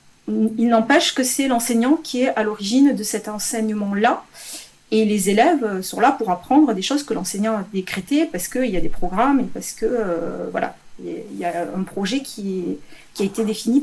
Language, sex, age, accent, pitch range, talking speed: French, female, 40-59, French, 200-260 Hz, 200 wpm